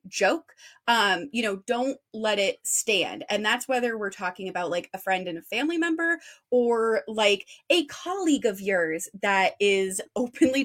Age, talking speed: 20-39, 170 wpm